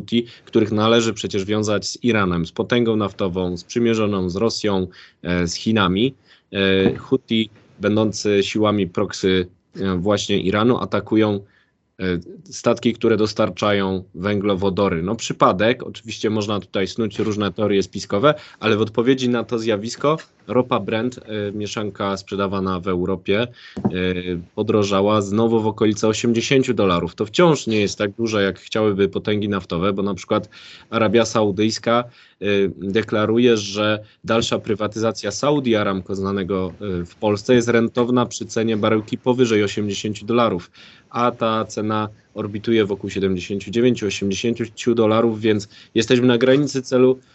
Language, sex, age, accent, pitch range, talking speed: Polish, male, 20-39, native, 100-120 Hz, 125 wpm